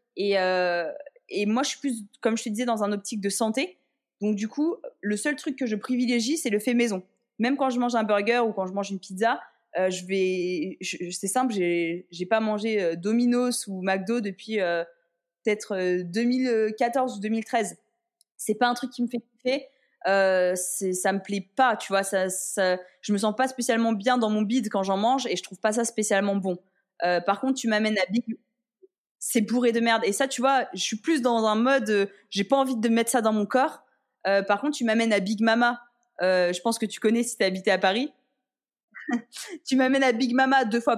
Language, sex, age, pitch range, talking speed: French, female, 20-39, 195-255 Hz, 230 wpm